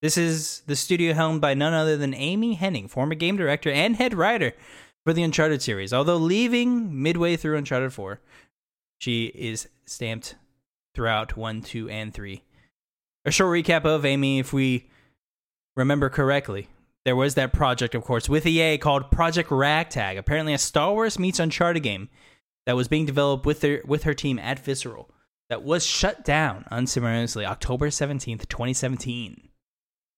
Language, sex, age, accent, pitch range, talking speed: English, male, 20-39, American, 120-165 Hz, 160 wpm